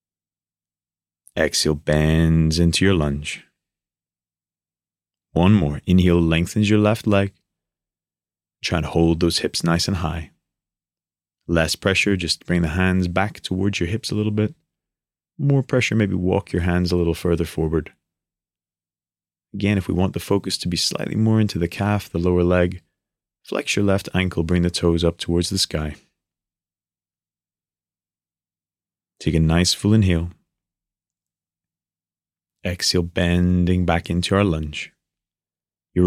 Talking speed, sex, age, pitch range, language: 135 wpm, male, 30-49, 85-95 Hz, English